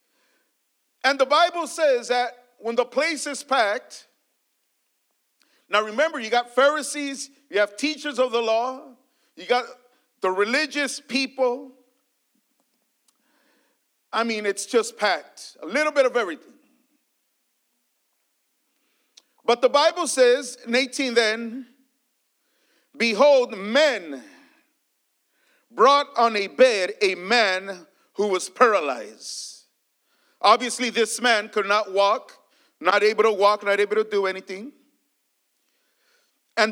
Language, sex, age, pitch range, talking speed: English, male, 50-69, 225-280 Hz, 115 wpm